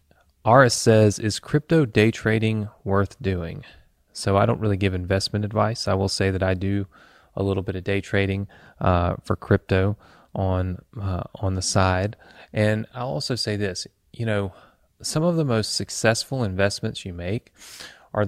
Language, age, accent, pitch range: English, 30-49, American, 95-115 Hz